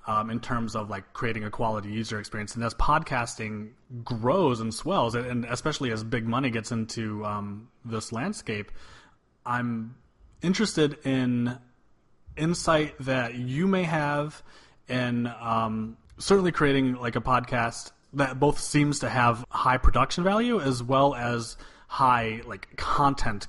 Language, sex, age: English, male, 30-49